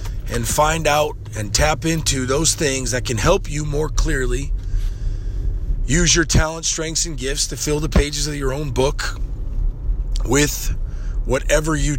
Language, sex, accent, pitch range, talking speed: English, male, American, 115-150 Hz, 155 wpm